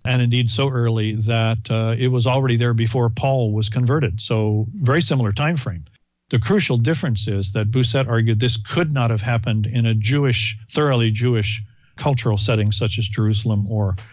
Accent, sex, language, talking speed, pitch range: American, male, English, 180 wpm, 105-125 Hz